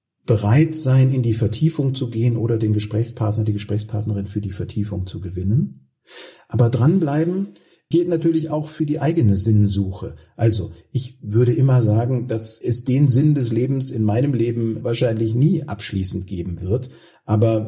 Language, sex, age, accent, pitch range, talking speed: German, male, 50-69, German, 110-130 Hz, 155 wpm